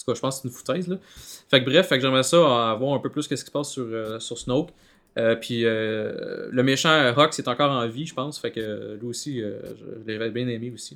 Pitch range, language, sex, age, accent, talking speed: 120-150 Hz, French, male, 20-39, Canadian, 285 wpm